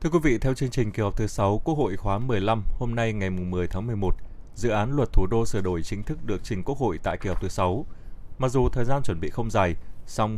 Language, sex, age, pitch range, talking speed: Vietnamese, male, 20-39, 95-120 Hz, 280 wpm